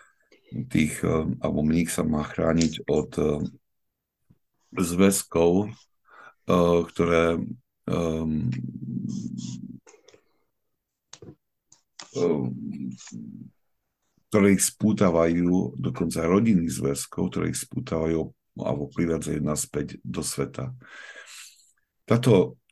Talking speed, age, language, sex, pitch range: 65 wpm, 50-69, Slovak, male, 80-95 Hz